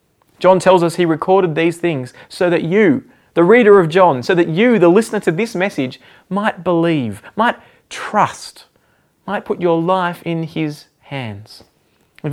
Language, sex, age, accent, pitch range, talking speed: English, male, 20-39, Australian, 145-185 Hz, 165 wpm